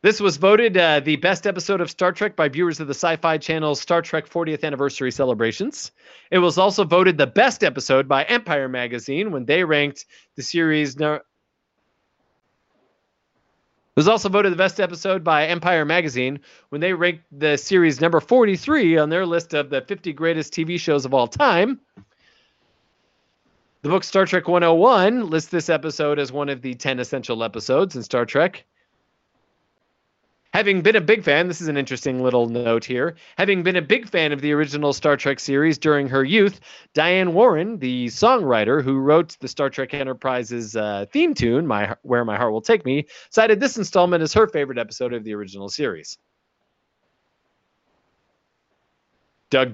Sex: male